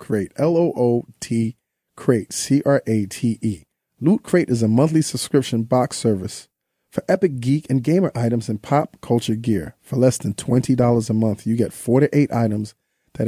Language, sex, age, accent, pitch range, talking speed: English, male, 40-59, American, 115-140 Hz, 190 wpm